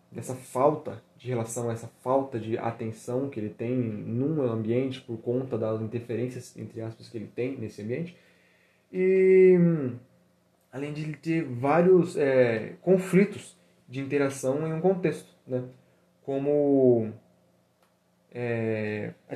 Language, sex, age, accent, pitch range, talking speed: Portuguese, male, 20-39, Brazilian, 120-155 Hz, 120 wpm